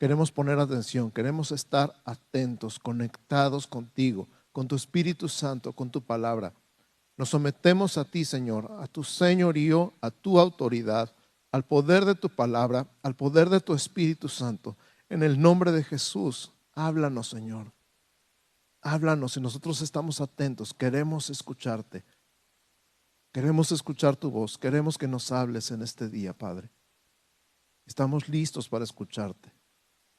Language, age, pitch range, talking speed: Spanish, 50-69, 120-155 Hz, 135 wpm